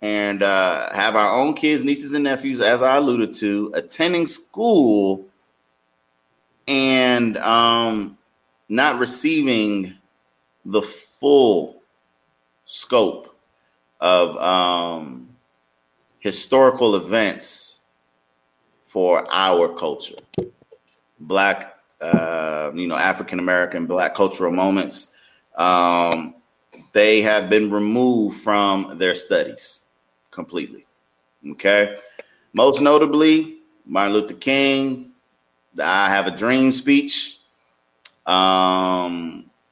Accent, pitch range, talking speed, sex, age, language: American, 75-115 Hz, 90 wpm, male, 30-49, English